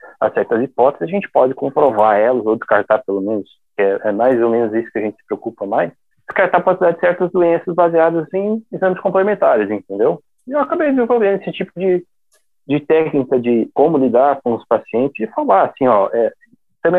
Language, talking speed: Portuguese, 190 wpm